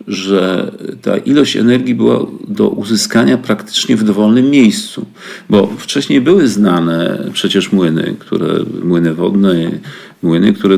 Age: 40-59